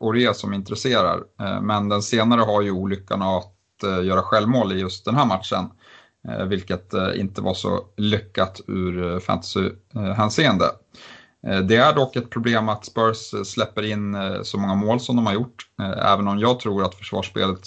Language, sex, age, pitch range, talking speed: Swedish, male, 30-49, 95-110 Hz, 165 wpm